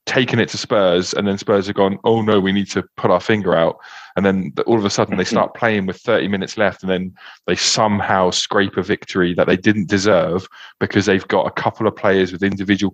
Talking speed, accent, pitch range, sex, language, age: 235 wpm, British, 90-110 Hz, male, English, 20-39